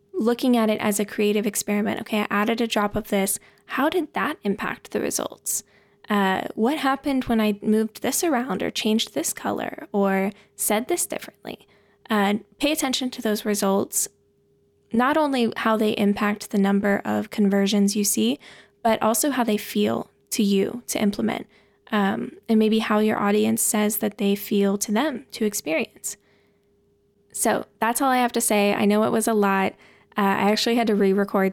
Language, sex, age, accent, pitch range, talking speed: English, female, 10-29, American, 200-225 Hz, 180 wpm